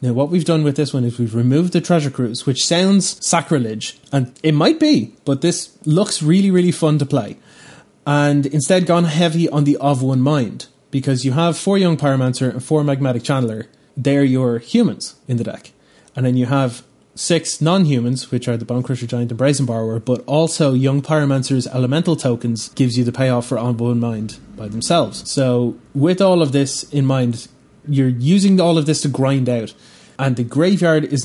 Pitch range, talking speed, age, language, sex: 125-155 Hz, 195 wpm, 20-39, English, male